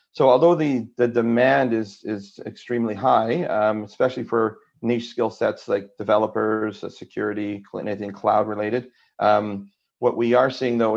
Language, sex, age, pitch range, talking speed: English, male, 40-59, 105-115 Hz, 140 wpm